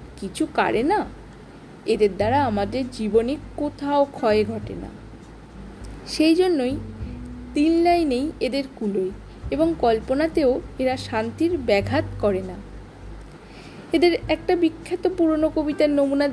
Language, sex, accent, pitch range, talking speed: Bengali, female, native, 220-310 Hz, 95 wpm